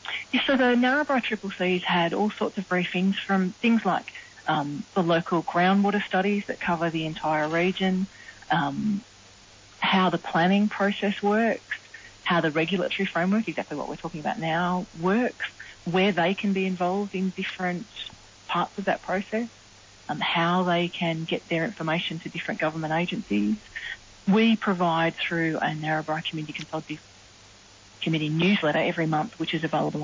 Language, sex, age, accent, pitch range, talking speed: English, female, 30-49, Australian, 155-195 Hz, 160 wpm